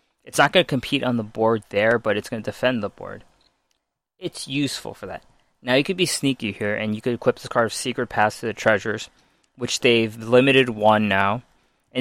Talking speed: 220 wpm